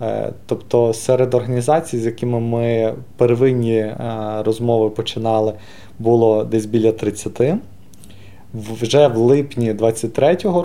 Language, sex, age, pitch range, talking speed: Ukrainian, male, 20-39, 110-120 Hz, 95 wpm